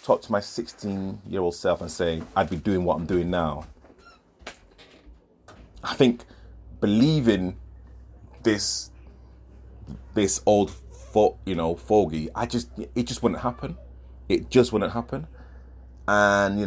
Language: English